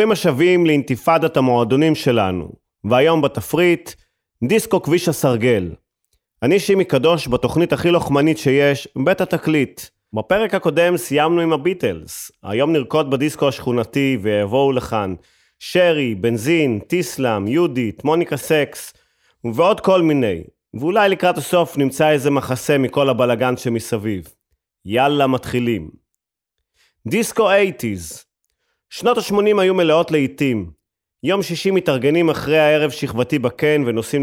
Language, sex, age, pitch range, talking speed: Hebrew, male, 30-49, 120-165 Hz, 100 wpm